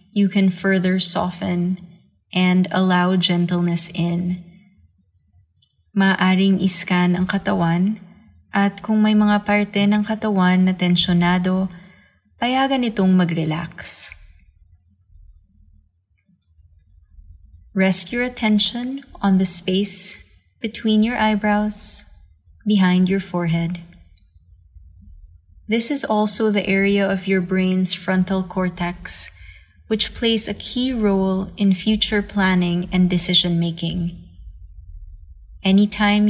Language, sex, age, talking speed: English, female, 20-39, 95 wpm